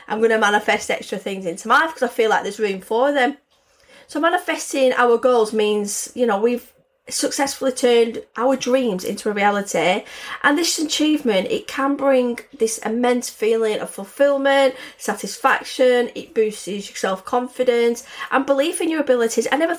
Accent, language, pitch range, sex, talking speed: British, English, 210-270 Hz, female, 165 wpm